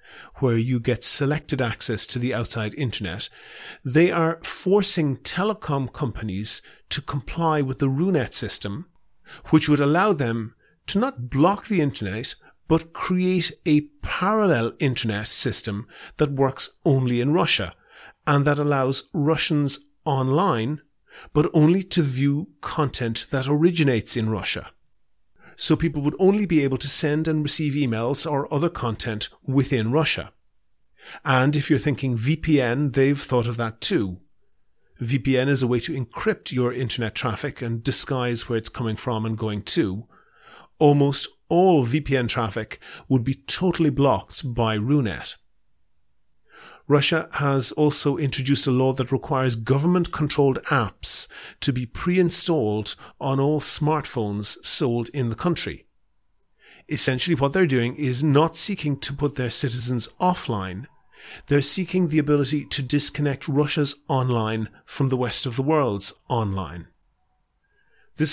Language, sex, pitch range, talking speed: English, male, 120-155 Hz, 135 wpm